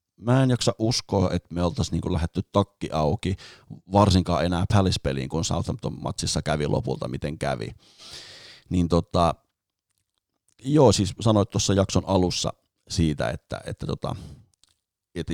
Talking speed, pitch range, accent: 135 wpm, 80-95 Hz, native